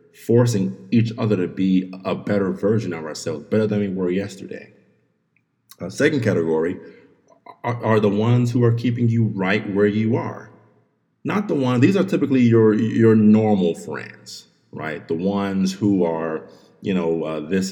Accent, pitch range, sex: American, 85-110 Hz, male